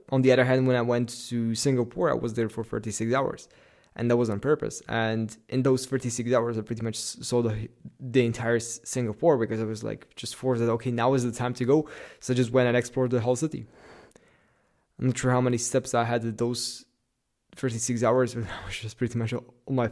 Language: English